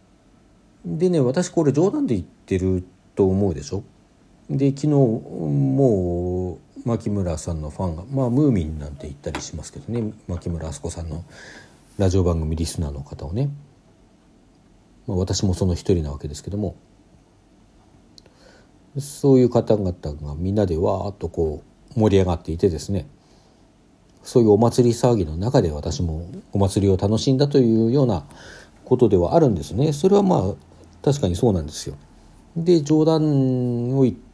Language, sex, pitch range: Japanese, male, 90-125 Hz